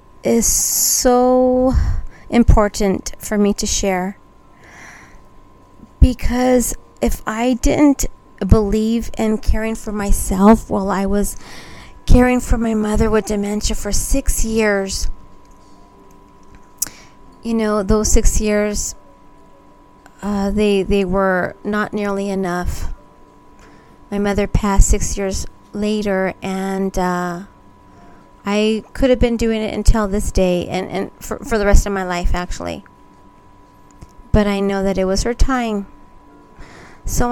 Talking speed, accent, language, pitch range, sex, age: 120 wpm, American, English, 185-235 Hz, female, 30-49